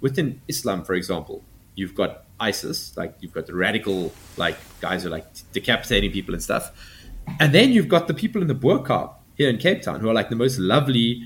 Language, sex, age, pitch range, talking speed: English, male, 20-39, 95-125 Hz, 215 wpm